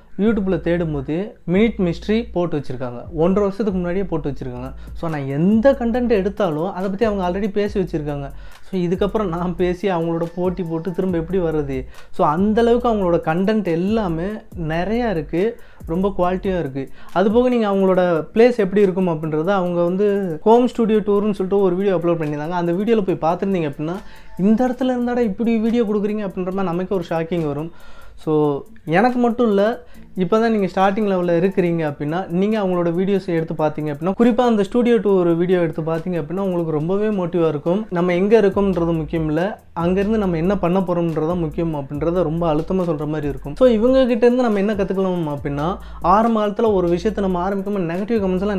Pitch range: 165-205 Hz